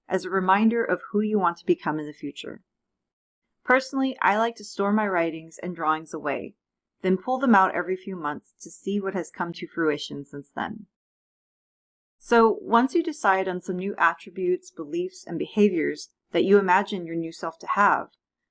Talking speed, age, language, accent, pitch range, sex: 185 wpm, 30-49, English, American, 165-225 Hz, female